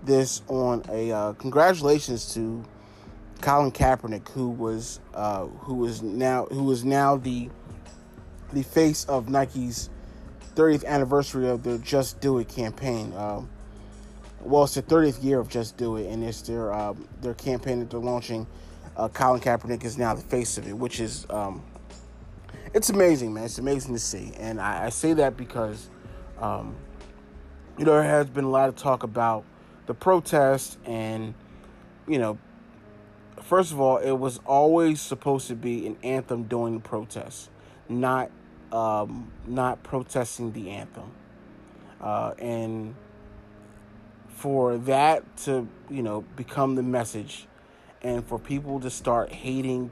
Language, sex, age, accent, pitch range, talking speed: English, male, 30-49, American, 110-135 Hz, 150 wpm